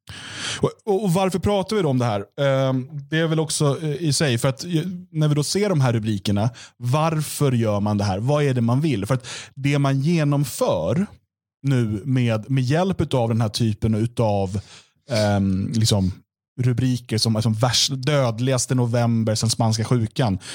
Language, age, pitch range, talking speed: Swedish, 30-49, 115-140 Hz, 175 wpm